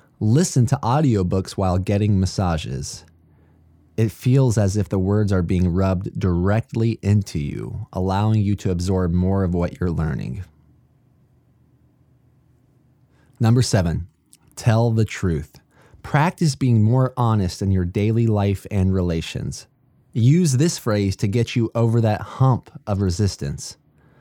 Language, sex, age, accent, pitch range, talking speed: English, male, 20-39, American, 95-130 Hz, 130 wpm